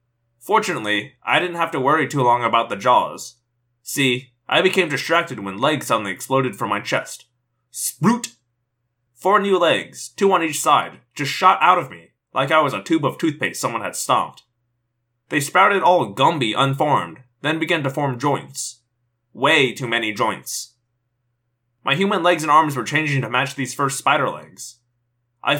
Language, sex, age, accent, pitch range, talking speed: English, male, 20-39, American, 120-150 Hz, 170 wpm